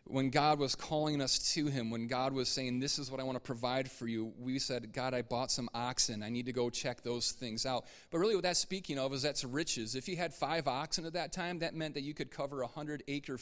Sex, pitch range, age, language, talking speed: male, 130-155 Hz, 30-49, English, 275 wpm